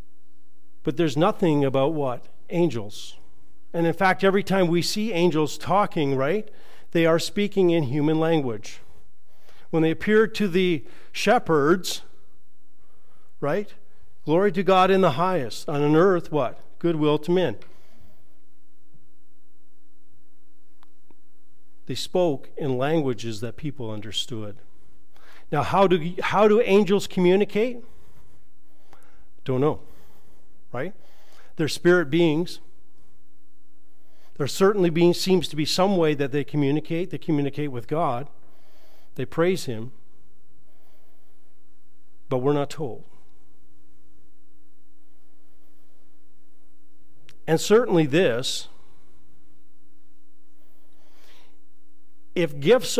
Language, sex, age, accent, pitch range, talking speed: English, male, 50-69, American, 105-175 Hz, 100 wpm